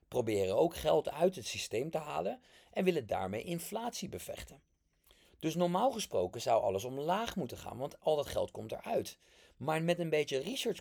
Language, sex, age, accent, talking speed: English, male, 40-59, Dutch, 180 wpm